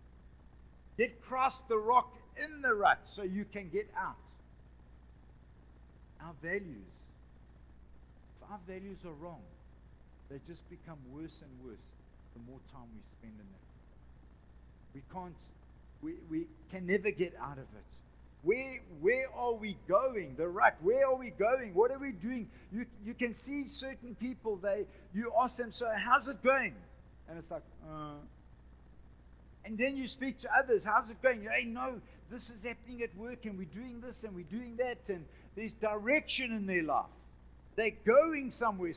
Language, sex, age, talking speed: English, male, 50-69, 165 wpm